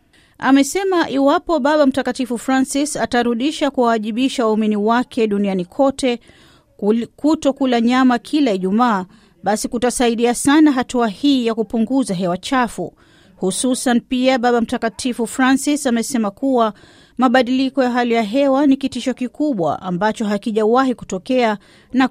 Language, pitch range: Swahili, 225-260 Hz